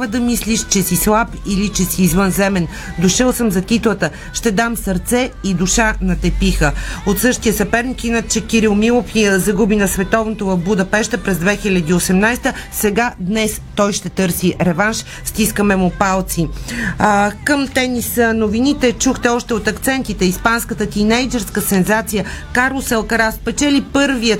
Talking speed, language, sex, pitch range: 140 wpm, Bulgarian, female, 195-240 Hz